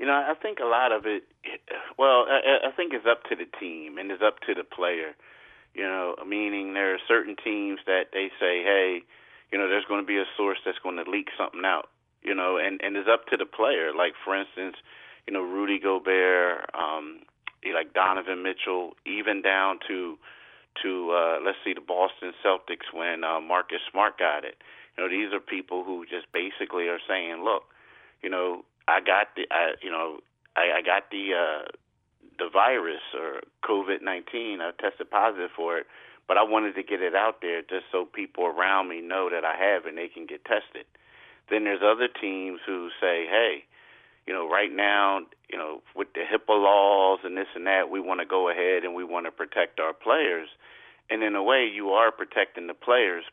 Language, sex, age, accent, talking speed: English, male, 30-49, American, 205 wpm